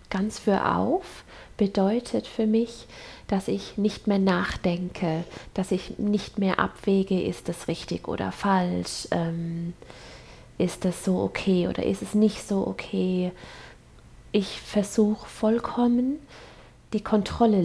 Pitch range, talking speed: 175-210 Hz, 125 wpm